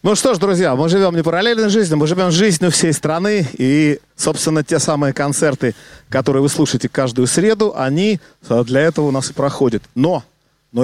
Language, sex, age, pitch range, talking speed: Russian, male, 40-59, 140-185 Hz, 190 wpm